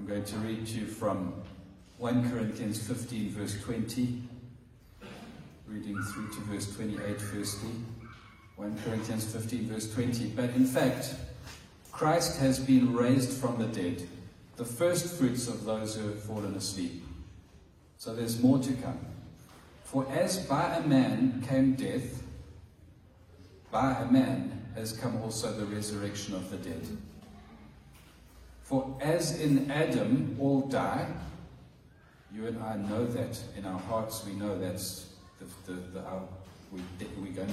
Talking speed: 140 wpm